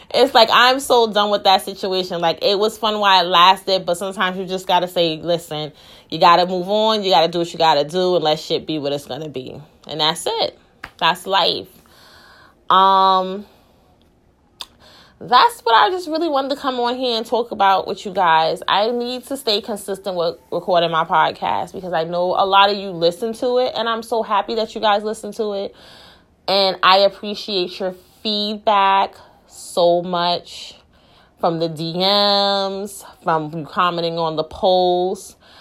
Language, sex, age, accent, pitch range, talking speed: English, female, 20-39, American, 175-230 Hz, 190 wpm